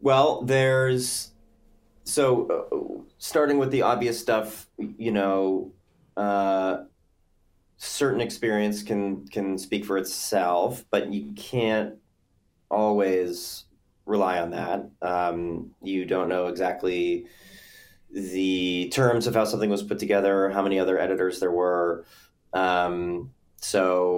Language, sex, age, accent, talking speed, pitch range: English, male, 30-49, American, 115 wpm, 90-105 Hz